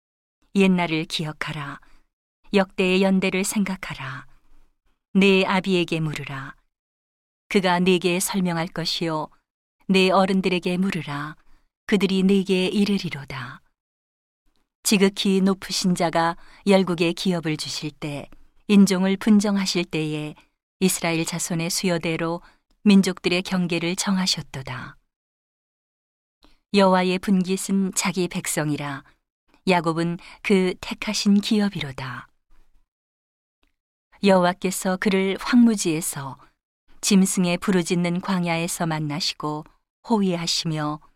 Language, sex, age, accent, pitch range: Korean, female, 40-59, native, 160-195 Hz